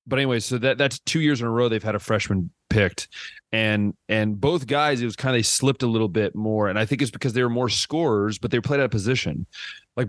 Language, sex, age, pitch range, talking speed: English, male, 30-49, 110-130 Hz, 270 wpm